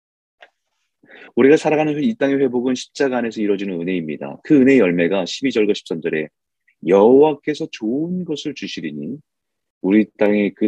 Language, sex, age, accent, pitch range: Korean, male, 30-49, native, 85-130 Hz